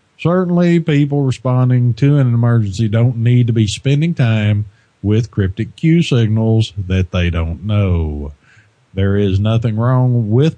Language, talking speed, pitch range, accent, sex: English, 140 wpm, 105-130 Hz, American, male